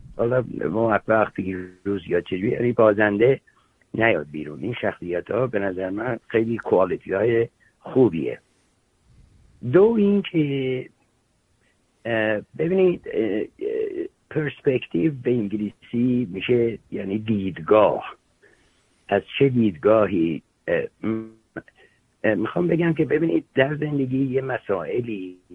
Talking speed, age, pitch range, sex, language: 90 wpm, 60-79, 95-140 Hz, male, English